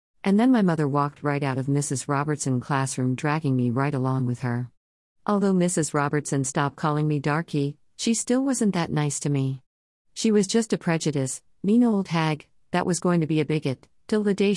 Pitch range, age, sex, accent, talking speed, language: 130-170 Hz, 50-69, female, American, 200 wpm, English